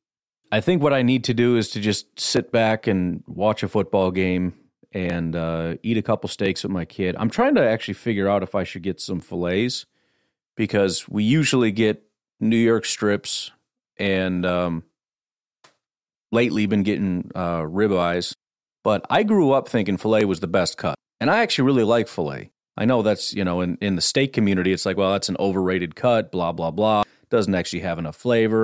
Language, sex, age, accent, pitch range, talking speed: English, male, 40-59, American, 90-115 Hz, 195 wpm